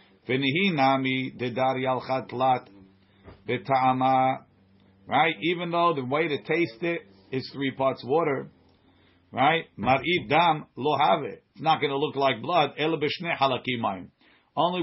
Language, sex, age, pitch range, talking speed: English, male, 50-69, 130-165 Hz, 85 wpm